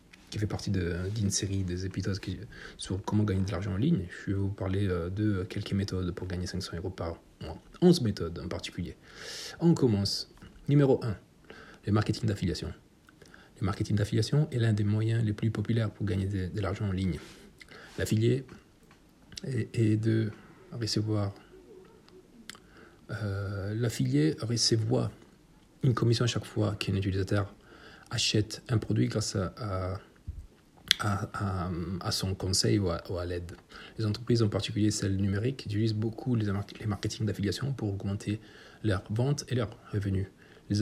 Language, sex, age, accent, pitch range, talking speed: Italian, male, 40-59, French, 95-115 Hz, 150 wpm